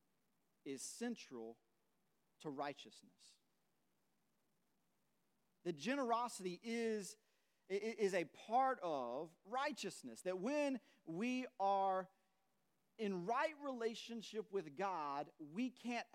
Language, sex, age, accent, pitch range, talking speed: English, male, 40-59, American, 170-220 Hz, 85 wpm